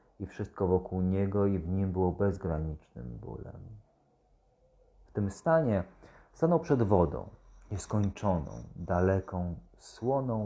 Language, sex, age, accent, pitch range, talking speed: Polish, male, 40-59, native, 90-120 Hz, 110 wpm